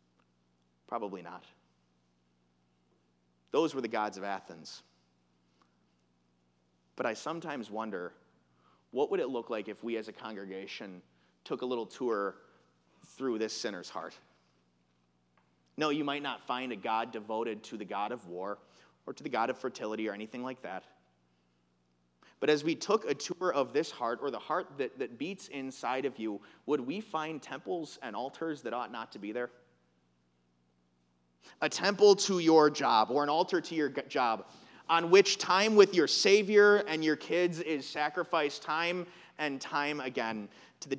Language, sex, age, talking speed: English, male, 30-49, 160 wpm